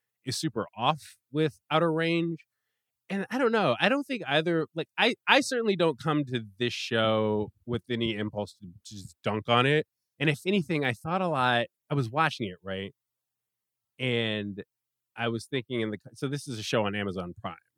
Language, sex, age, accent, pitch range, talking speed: English, male, 20-39, American, 105-145 Hz, 195 wpm